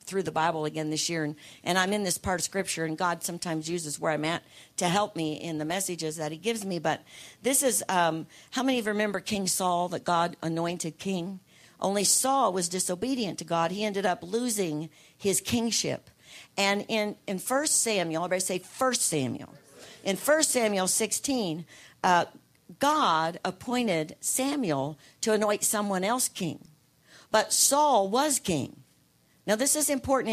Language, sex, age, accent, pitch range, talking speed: English, female, 50-69, American, 165-235 Hz, 175 wpm